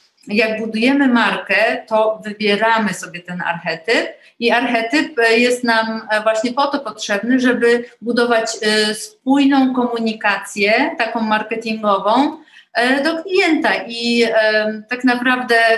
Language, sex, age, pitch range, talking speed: Polish, female, 30-49, 205-245 Hz, 105 wpm